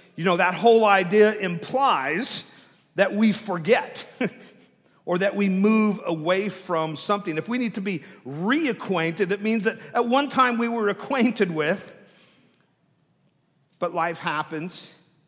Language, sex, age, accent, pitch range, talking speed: English, male, 50-69, American, 150-185 Hz, 140 wpm